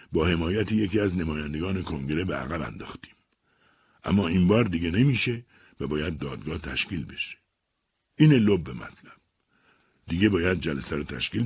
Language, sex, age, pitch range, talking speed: Persian, male, 60-79, 85-125 Hz, 140 wpm